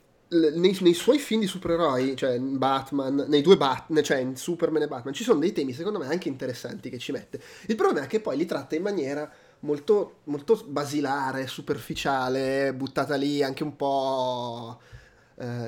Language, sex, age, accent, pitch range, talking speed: Italian, male, 30-49, native, 135-170 Hz, 185 wpm